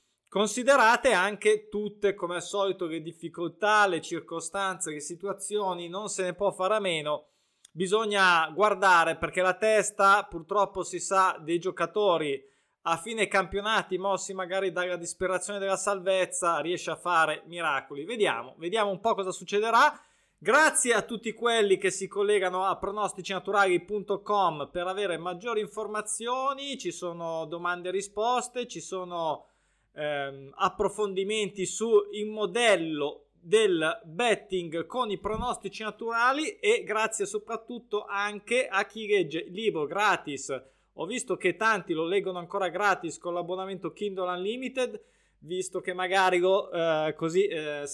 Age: 20-39